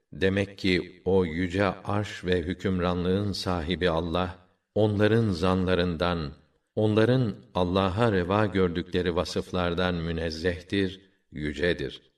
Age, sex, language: 50-69, male, Turkish